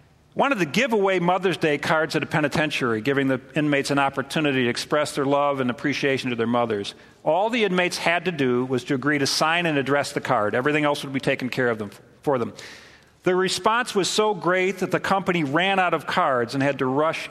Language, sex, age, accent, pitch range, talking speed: English, male, 50-69, American, 140-175 Hz, 220 wpm